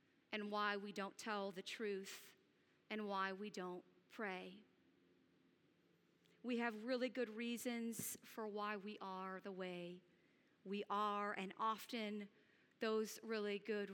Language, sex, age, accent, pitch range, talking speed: English, female, 40-59, American, 205-240 Hz, 130 wpm